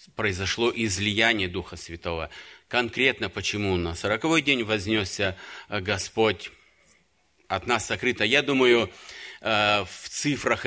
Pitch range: 95-120 Hz